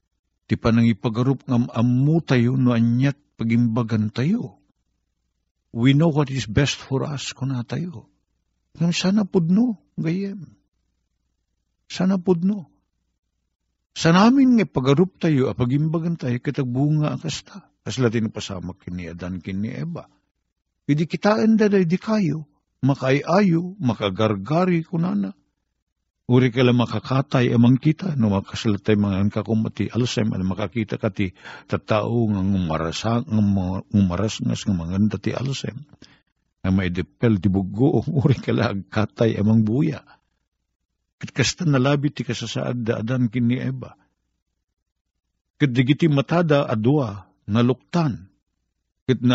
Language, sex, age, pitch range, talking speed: Filipino, male, 50-69, 100-150 Hz, 120 wpm